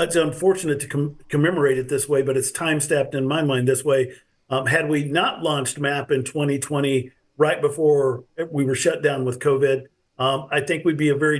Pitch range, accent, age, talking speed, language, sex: 135-165 Hz, American, 50-69, 205 wpm, English, male